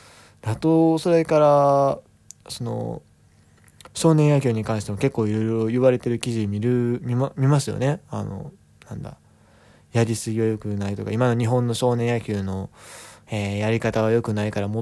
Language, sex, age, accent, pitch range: Japanese, male, 20-39, native, 110-145 Hz